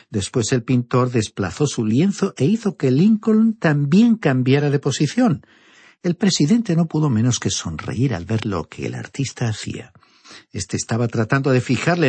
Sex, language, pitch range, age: male, Spanish, 115-175 Hz, 50-69